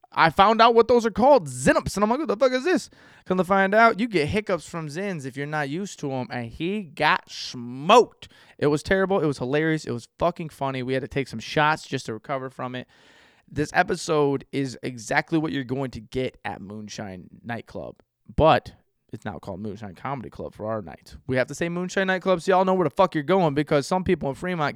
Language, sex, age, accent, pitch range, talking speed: English, male, 20-39, American, 120-160 Hz, 240 wpm